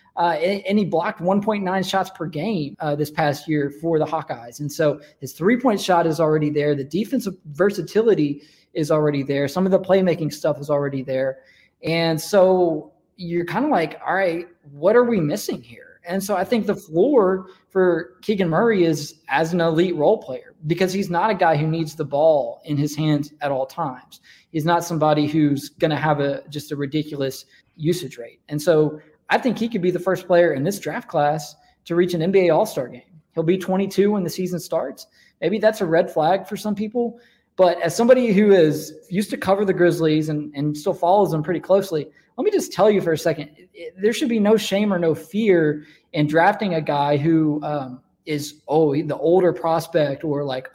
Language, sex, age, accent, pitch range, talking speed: English, male, 20-39, American, 150-190 Hz, 205 wpm